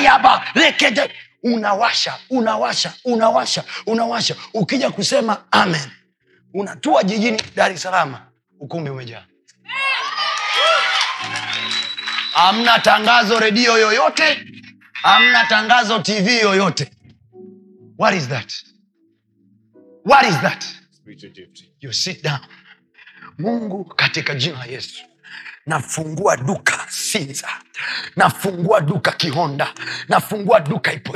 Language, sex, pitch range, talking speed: Swahili, male, 170-235 Hz, 90 wpm